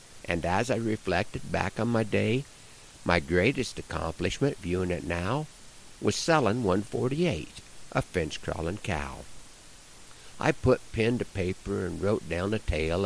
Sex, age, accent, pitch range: male, 60-79, American, 90-125 Hz